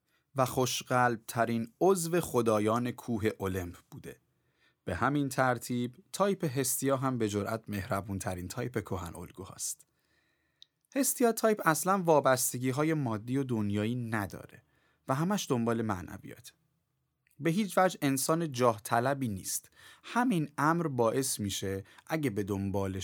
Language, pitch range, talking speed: Persian, 105-140 Hz, 130 wpm